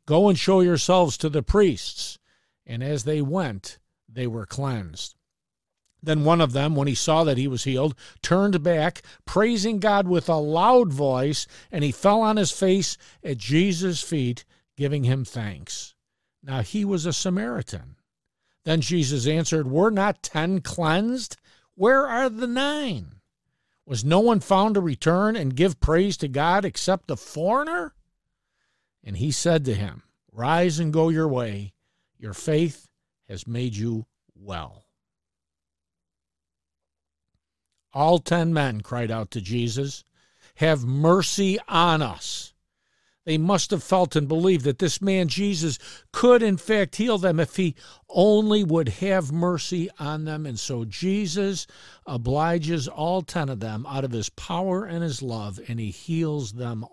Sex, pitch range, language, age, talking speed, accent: male, 120-185 Hz, English, 50-69, 150 wpm, American